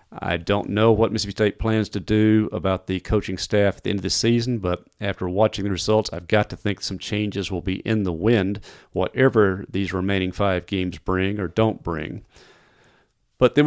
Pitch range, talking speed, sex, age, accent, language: 95-120 Hz, 200 wpm, male, 40-59, American, English